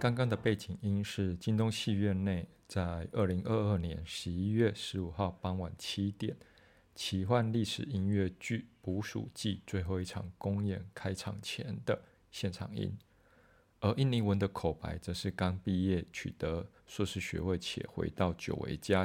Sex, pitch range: male, 90-105 Hz